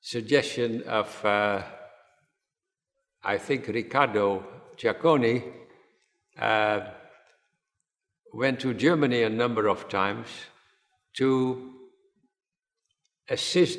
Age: 60-79